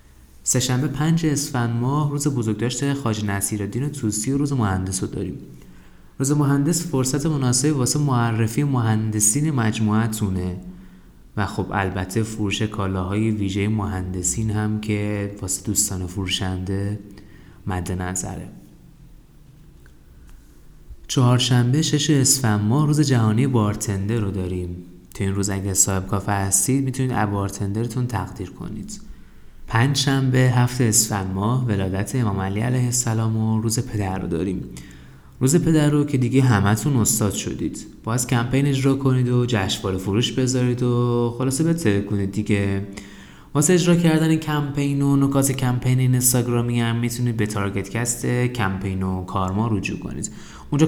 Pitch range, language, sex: 100-130 Hz, Persian, male